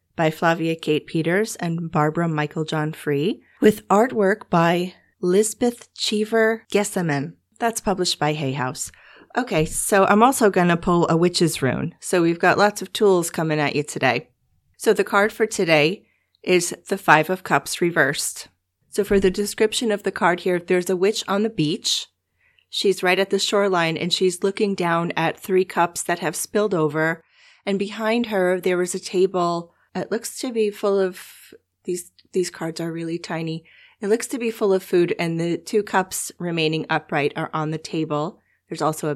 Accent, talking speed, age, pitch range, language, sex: American, 185 wpm, 30-49, 160-200 Hz, English, female